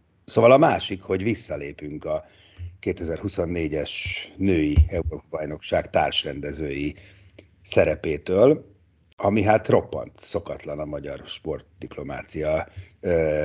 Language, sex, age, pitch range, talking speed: Hungarian, male, 50-69, 85-100 Hz, 85 wpm